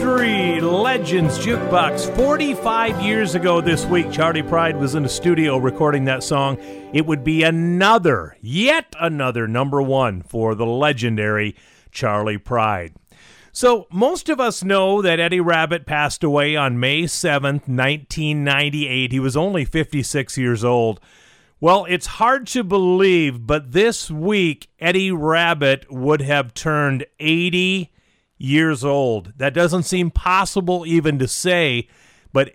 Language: English